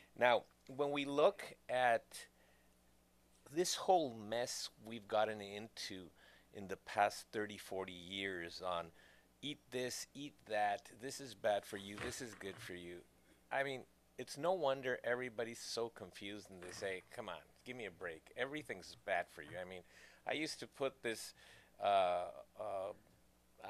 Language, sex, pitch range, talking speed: English, male, 100-145 Hz, 155 wpm